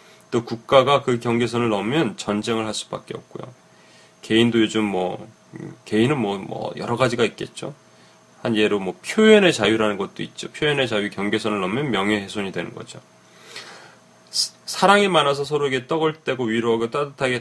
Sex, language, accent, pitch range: male, Korean, native, 105-130 Hz